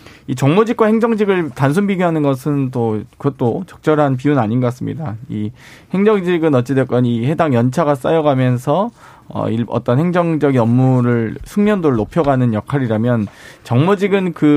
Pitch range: 125-160 Hz